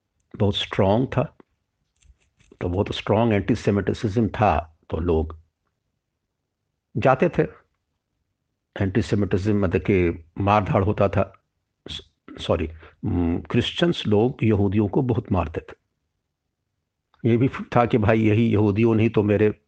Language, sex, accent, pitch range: Hindi, male, native, 95-115 Hz